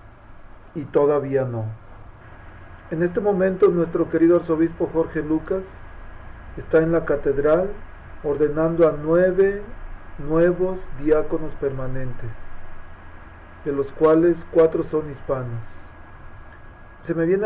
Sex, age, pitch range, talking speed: male, 40-59, 120-170 Hz, 105 wpm